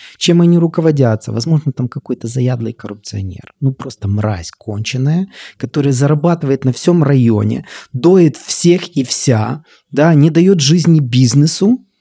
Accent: native